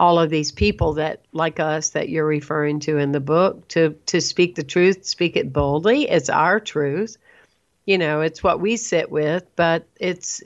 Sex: female